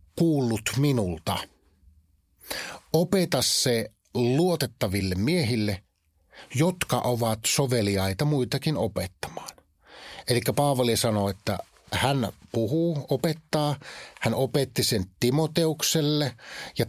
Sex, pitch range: male, 110-150 Hz